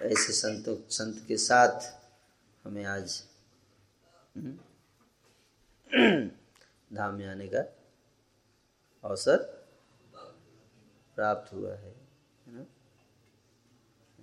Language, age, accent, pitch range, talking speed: Hindi, 30-49, native, 100-125 Hz, 60 wpm